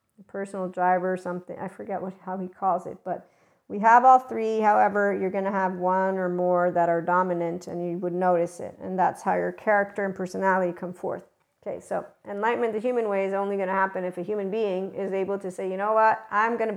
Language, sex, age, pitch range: English, female, 50-69, 190-220 Hz